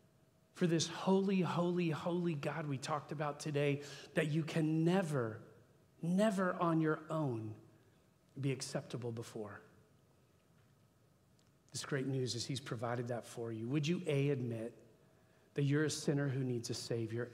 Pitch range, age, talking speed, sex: 125-160 Hz, 40-59, 145 wpm, male